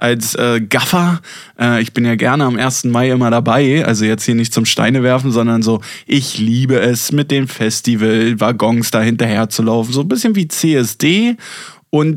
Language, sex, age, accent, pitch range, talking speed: German, male, 20-39, German, 120-145 Hz, 185 wpm